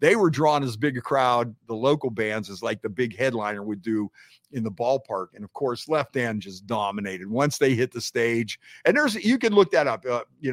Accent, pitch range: American, 110-145 Hz